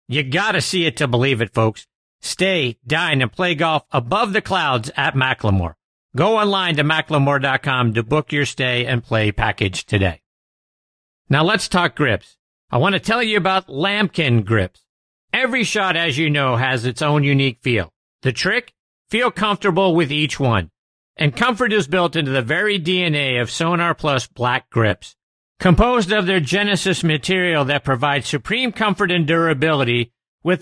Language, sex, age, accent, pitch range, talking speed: English, male, 50-69, American, 125-190 Hz, 165 wpm